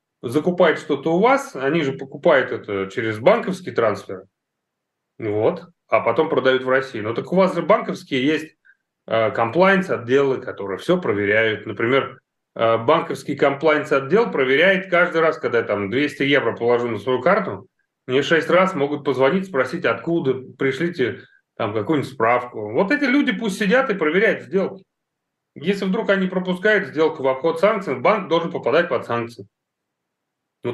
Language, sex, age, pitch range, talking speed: Russian, male, 30-49, 125-185 Hz, 160 wpm